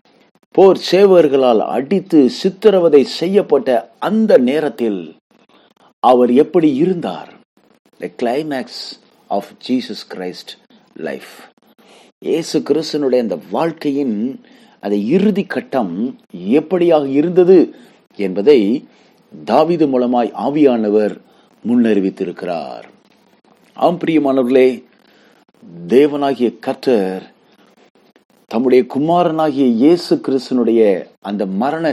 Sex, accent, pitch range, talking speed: male, native, 110-180 Hz, 65 wpm